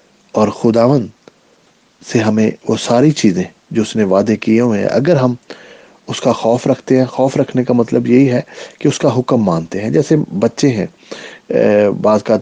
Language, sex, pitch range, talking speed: English, male, 110-140 Hz, 180 wpm